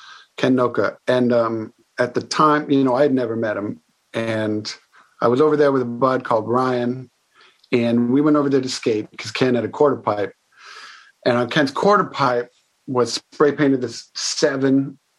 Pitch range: 115-130 Hz